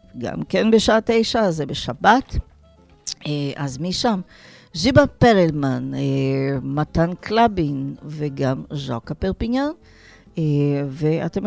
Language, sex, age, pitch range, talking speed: Hebrew, female, 40-59, 155-220 Hz, 85 wpm